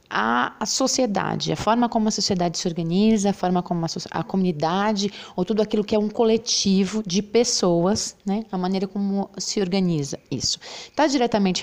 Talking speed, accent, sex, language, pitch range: 175 wpm, Brazilian, female, Portuguese, 180-235 Hz